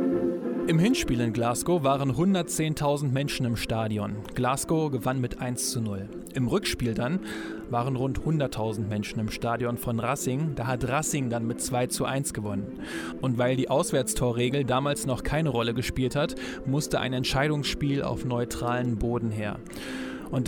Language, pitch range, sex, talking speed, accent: German, 120-150 Hz, male, 155 wpm, German